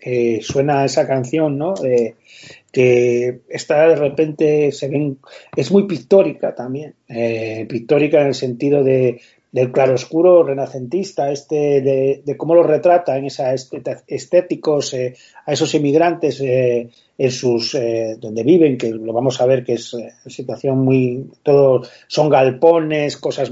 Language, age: Spanish, 40-59